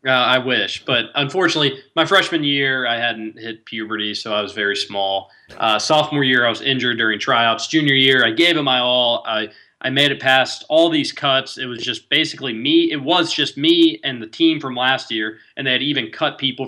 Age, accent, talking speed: 20-39, American, 220 wpm